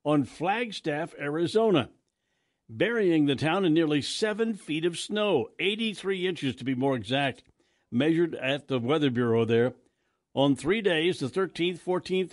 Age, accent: 60-79, American